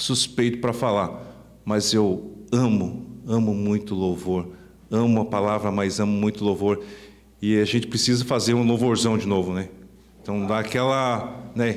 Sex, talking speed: male, 155 wpm